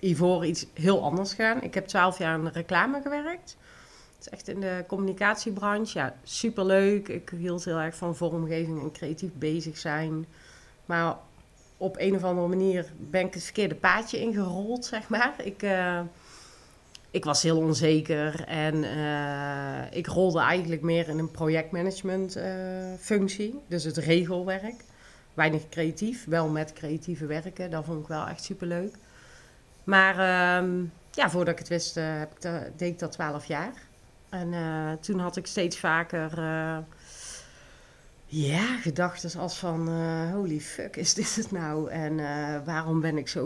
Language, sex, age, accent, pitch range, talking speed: Dutch, female, 30-49, Dutch, 155-190 Hz, 160 wpm